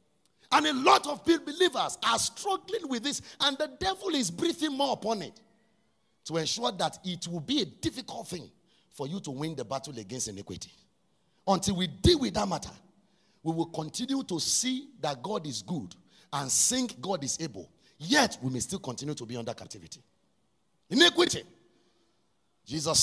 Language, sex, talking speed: English, male, 170 wpm